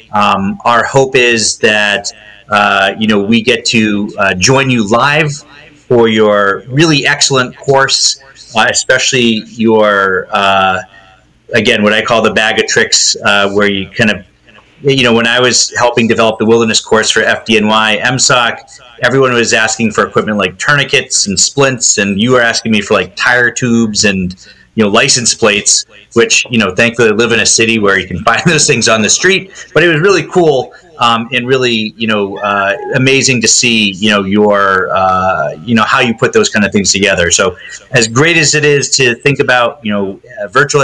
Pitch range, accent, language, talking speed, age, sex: 105-130 Hz, American, English, 195 wpm, 30-49, male